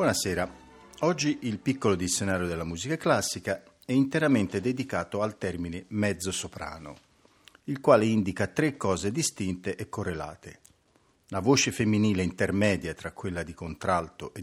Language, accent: Italian, native